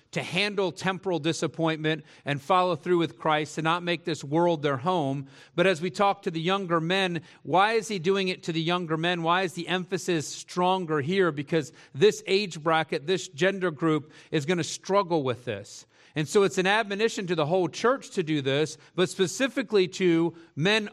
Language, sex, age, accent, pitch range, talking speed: English, male, 40-59, American, 135-185 Hz, 195 wpm